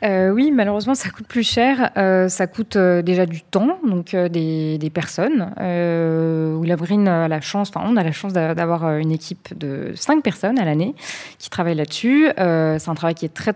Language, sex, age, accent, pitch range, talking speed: French, female, 20-39, French, 165-195 Hz, 205 wpm